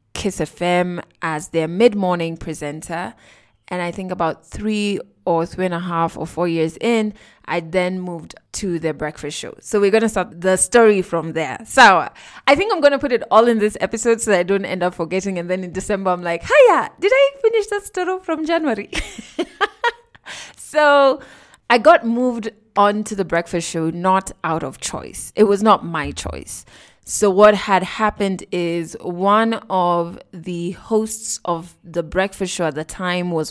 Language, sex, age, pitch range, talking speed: English, female, 20-39, 170-220 Hz, 190 wpm